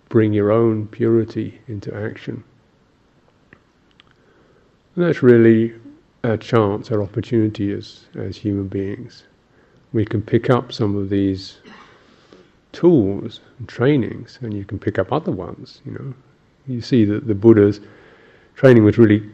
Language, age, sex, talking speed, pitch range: English, 50-69, male, 135 wpm, 100-115 Hz